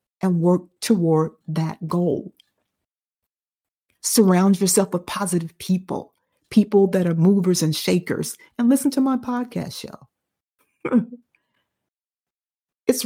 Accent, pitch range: American, 175-215 Hz